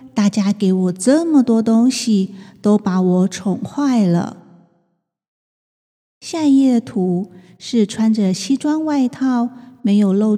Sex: female